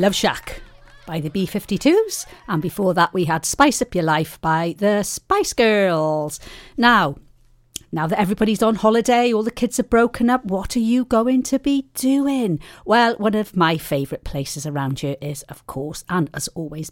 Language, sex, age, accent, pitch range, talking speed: English, female, 40-59, British, 160-215 Hz, 180 wpm